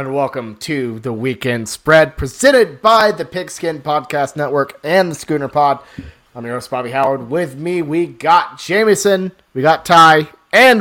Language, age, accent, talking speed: English, 30-49, American, 165 wpm